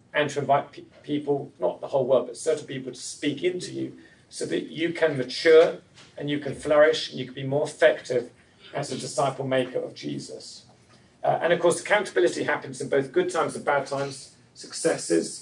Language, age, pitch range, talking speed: English, 40-59, 135-170 Hz, 200 wpm